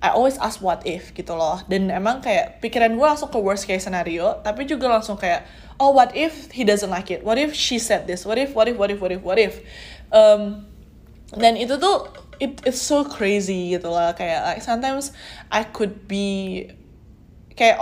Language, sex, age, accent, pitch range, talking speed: English, female, 20-39, Indonesian, 190-245 Hz, 200 wpm